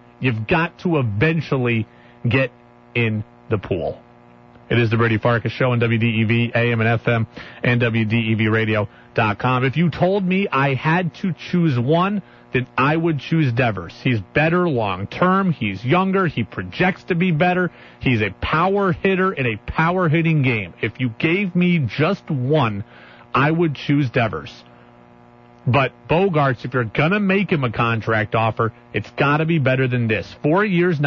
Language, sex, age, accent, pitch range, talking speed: English, male, 40-59, American, 115-170 Hz, 160 wpm